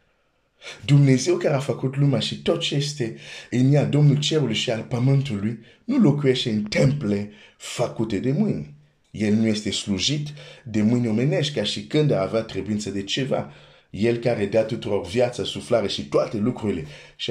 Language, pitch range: Romanian, 100-130 Hz